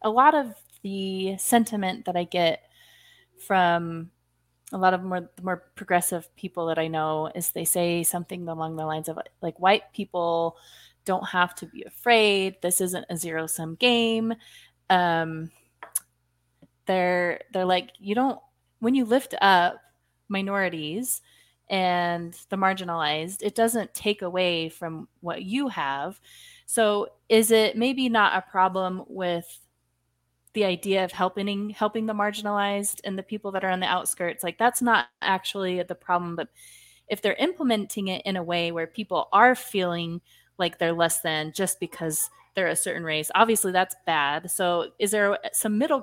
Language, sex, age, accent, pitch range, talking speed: English, female, 20-39, American, 170-205 Hz, 160 wpm